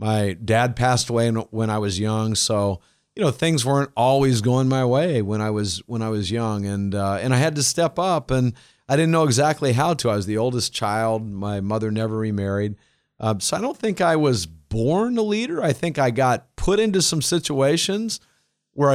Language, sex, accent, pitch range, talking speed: English, male, American, 110-150 Hz, 210 wpm